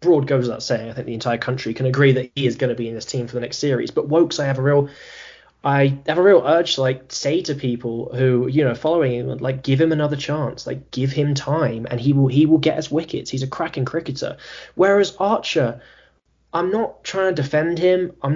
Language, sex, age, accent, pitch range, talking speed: English, male, 10-29, British, 125-165 Hz, 245 wpm